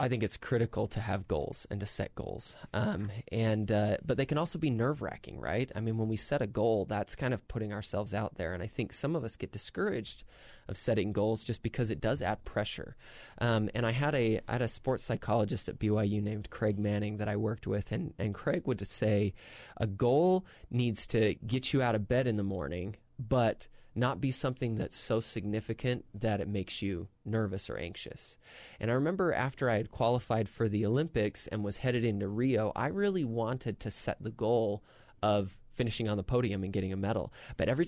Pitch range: 105-125 Hz